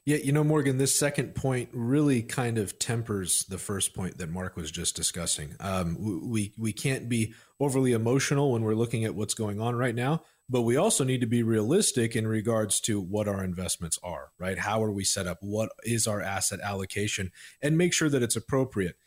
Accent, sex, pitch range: American, male, 100-130 Hz